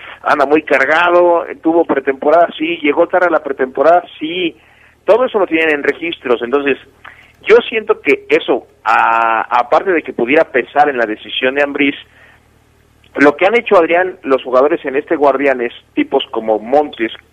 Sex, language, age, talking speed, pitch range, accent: male, Spanish, 40-59, 165 wpm, 115-155 Hz, Mexican